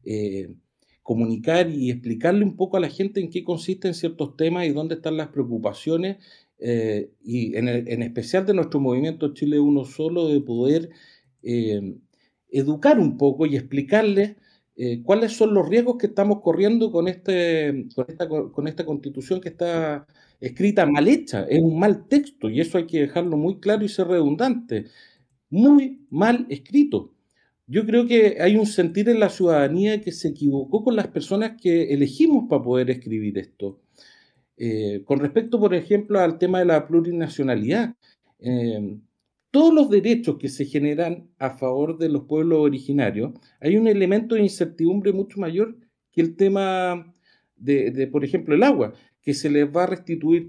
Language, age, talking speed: Spanish, 40-59, 170 wpm